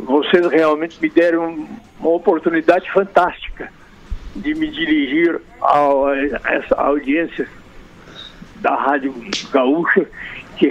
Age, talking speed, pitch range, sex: 60-79, 95 wpm, 145-175 Hz, male